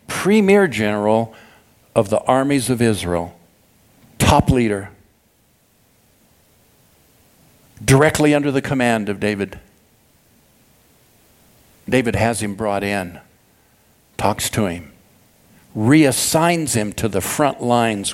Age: 60-79